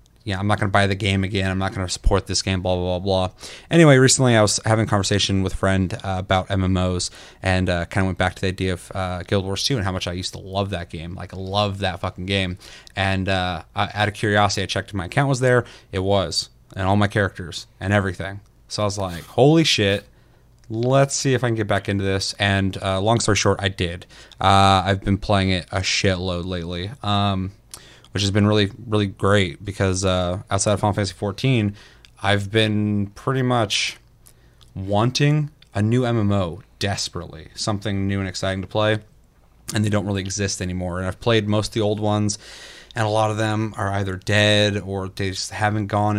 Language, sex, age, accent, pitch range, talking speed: English, male, 20-39, American, 95-105 Hz, 220 wpm